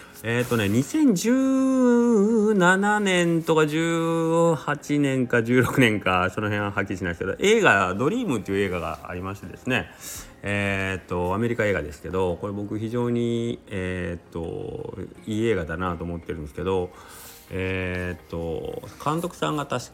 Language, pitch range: Japanese, 90-120 Hz